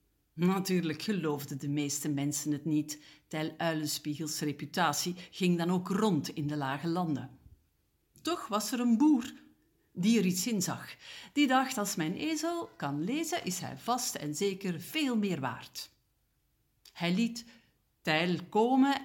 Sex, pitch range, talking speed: female, 145-200 Hz, 150 wpm